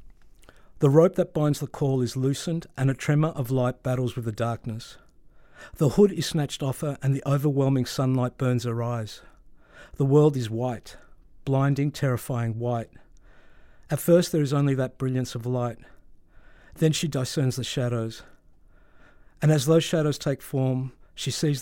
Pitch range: 120-150 Hz